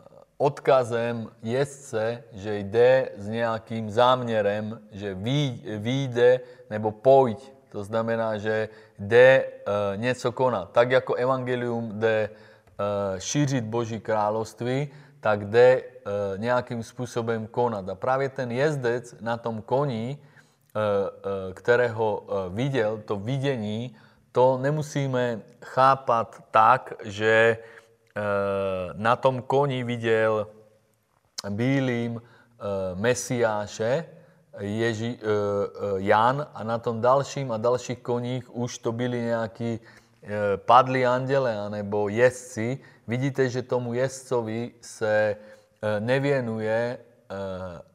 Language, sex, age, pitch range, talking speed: Czech, male, 30-49, 110-125 Hz, 105 wpm